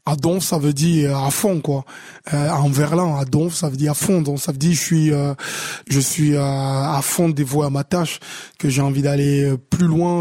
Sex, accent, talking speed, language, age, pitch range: male, French, 235 wpm, French, 20-39, 145-170 Hz